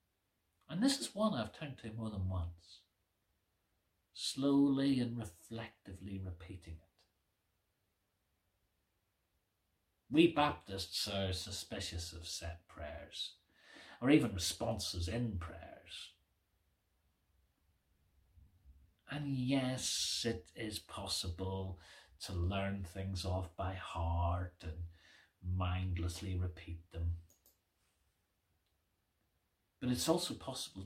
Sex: male